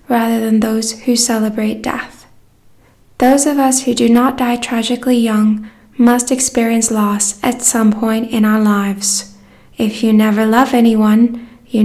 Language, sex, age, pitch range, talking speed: English, female, 10-29, 215-250 Hz, 150 wpm